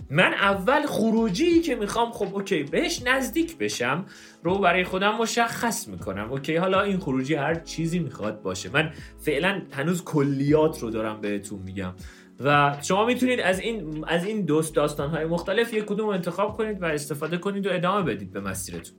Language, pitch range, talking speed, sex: Persian, 135-210 Hz, 175 wpm, male